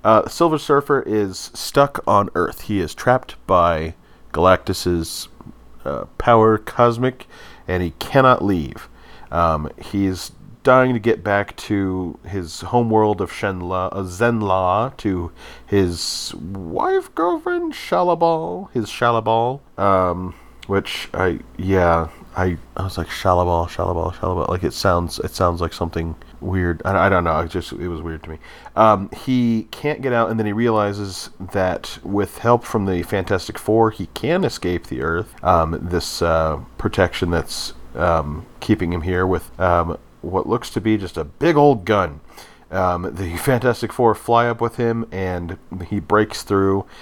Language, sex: English, male